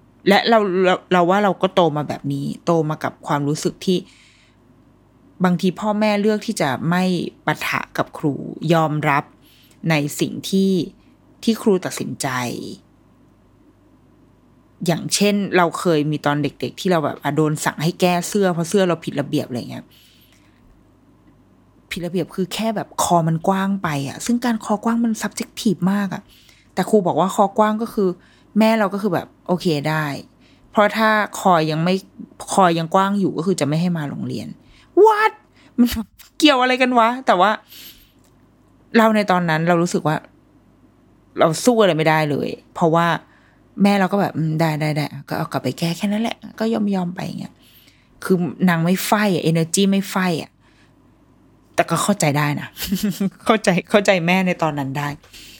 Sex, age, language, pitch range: female, 20-39, Thai, 155-205 Hz